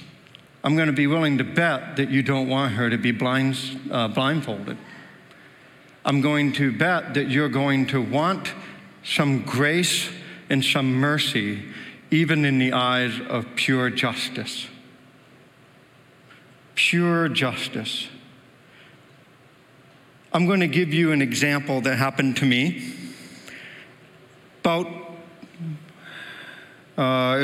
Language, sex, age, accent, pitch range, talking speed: English, male, 60-79, American, 130-160 Hz, 115 wpm